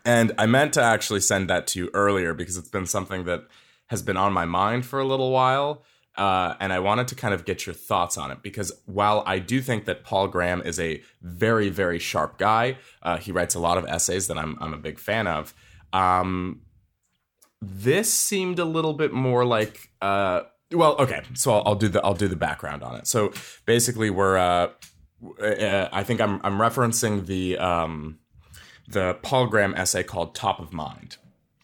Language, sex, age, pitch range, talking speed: English, male, 20-39, 90-120 Hz, 200 wpm